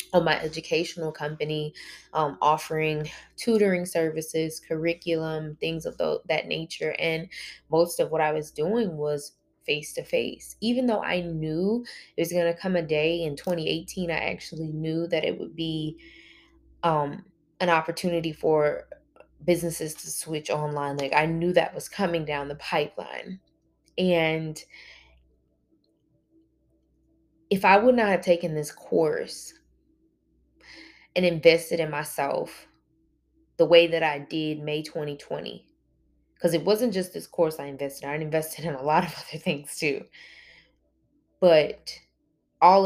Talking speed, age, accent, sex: 140 wpm, 20-39, American, female